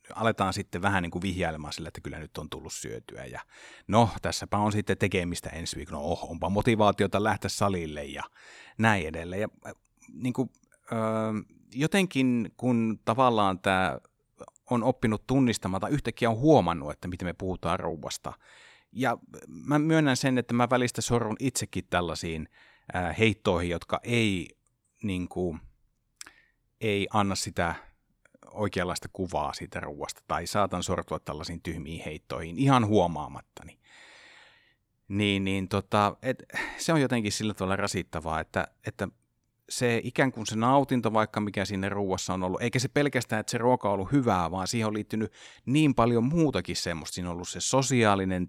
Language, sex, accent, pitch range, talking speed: Finnish, male, native, 90-120 Hz, 155 wpm